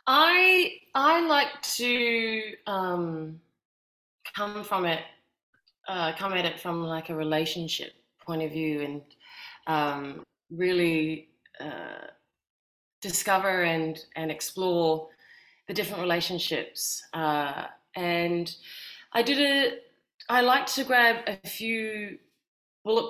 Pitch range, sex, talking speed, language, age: 155-225 Hz, female, 110 wpm, English, 30-49